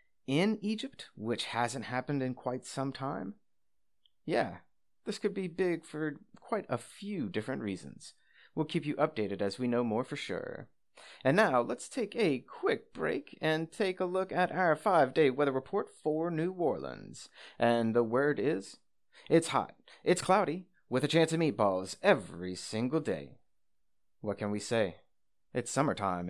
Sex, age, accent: male, 30-49, American